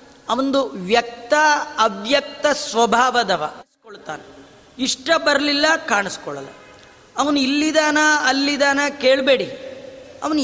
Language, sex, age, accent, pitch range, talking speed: Kannada, female, 30-49, native, 245-295 Hz, 75 wpm